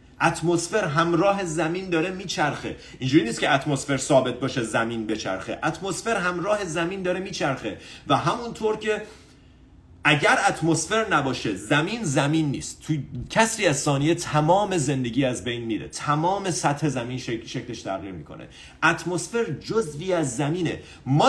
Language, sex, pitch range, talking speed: Persian, male, 120-175 Hz, 135 wpm